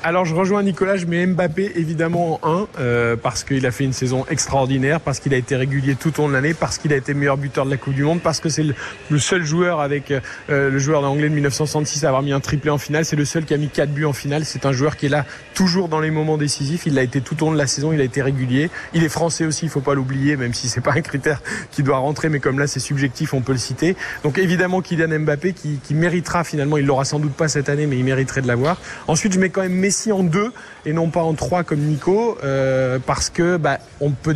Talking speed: 280 wpm